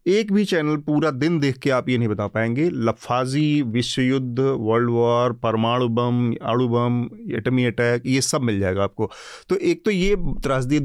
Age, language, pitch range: 30-49, Hindi, 120-155 Hz